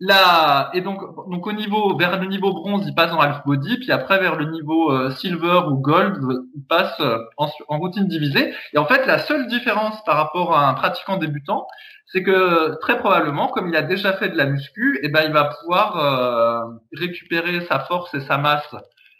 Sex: male